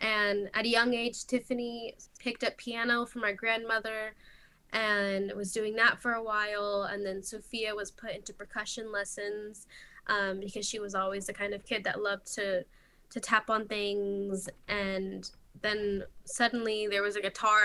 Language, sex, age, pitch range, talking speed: English, female, 10-29, 200-230 Hz, 170 wpm